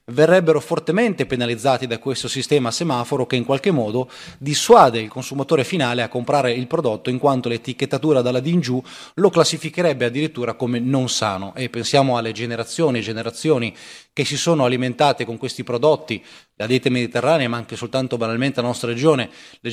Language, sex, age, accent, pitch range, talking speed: Italian, male, 20-39, native, 120-155 Hz, 165 wpm